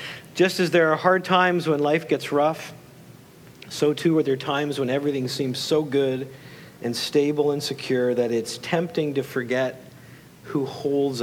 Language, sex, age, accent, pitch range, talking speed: English, male, 50-69, American, 135-170 Hz, 165 wpm